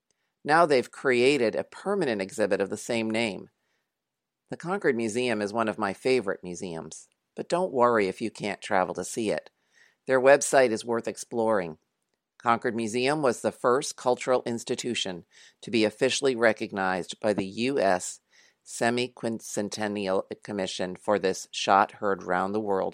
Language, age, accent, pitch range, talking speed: English, 40-59, American, 100-115 Hz, 140 wpm